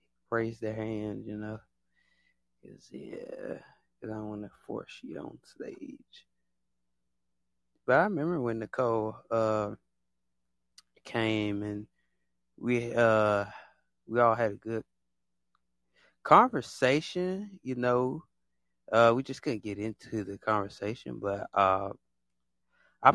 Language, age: English, 20-39